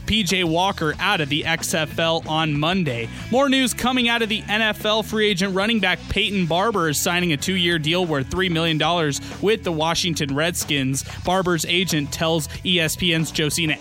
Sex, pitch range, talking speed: male, 155-195 Hz, 170 wpm